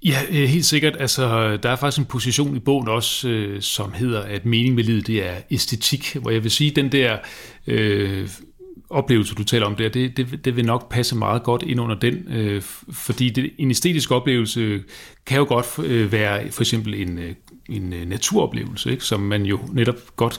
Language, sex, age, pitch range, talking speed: Danish, male, 40-59, 105-125 Hz, 200 wpm